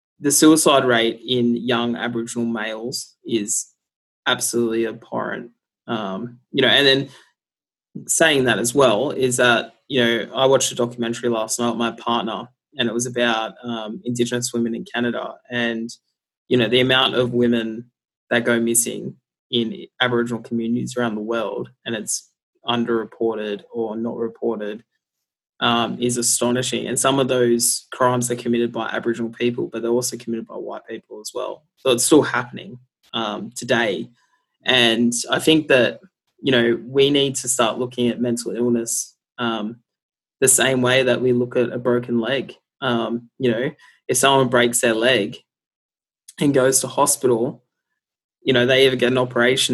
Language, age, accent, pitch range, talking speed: English, 20-39, Australian, 115-125 Hz, 165 wpm